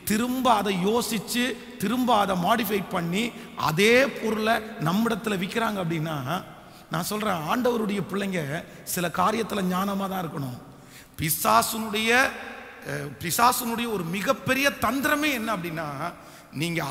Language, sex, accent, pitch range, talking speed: Tamil, male, native, 165-220 Hz, 105 wpm